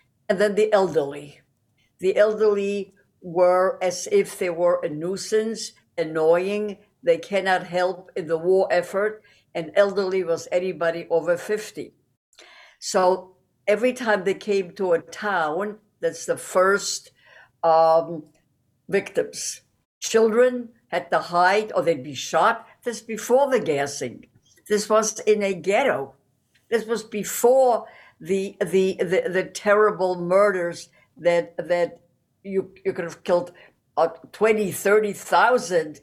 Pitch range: 165-205 Hz